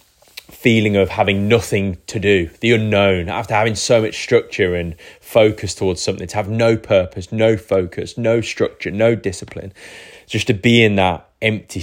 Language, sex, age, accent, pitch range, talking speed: English, male, 20-39, British, 90-110 Hz, 165 wpm